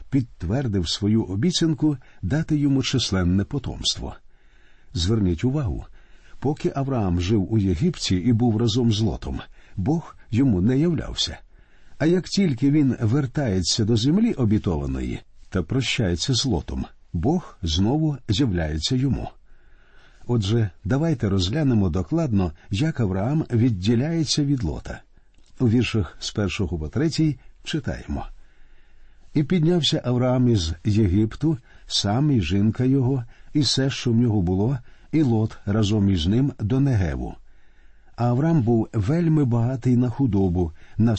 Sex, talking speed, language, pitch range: male, 125 wpm, Ukrainian, 100-140 Hz